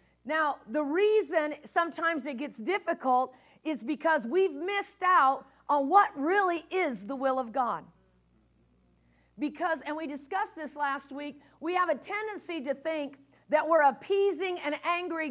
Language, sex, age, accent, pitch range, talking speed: English, female, 50-69, American, 260-345 Hz, 150 wpm